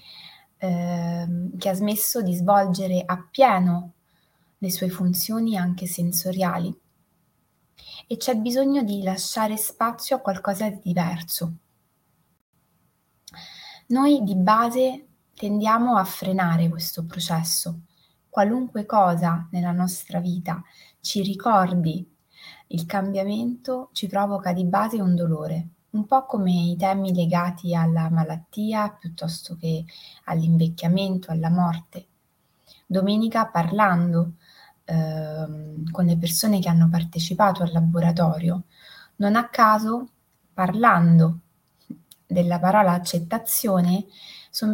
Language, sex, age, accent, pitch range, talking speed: Italian, female, 20-39, native, 170-210 Hz, 100 wpm